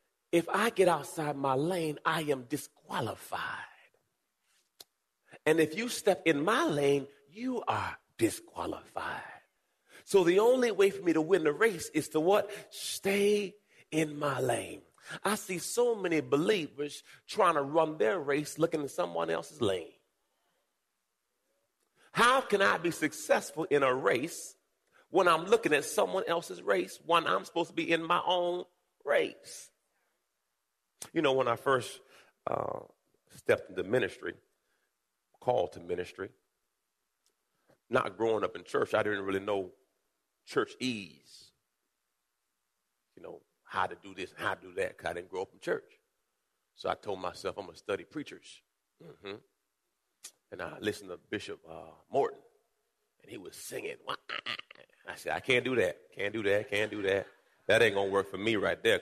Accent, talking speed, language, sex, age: American, 160 wpm, English, male, 40-59